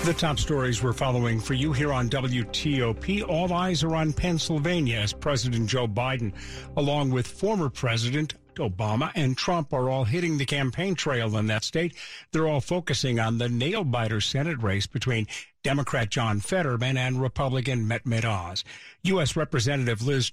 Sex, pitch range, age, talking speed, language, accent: male, 120-150 Hz, 50-69, 160 wpm, English, American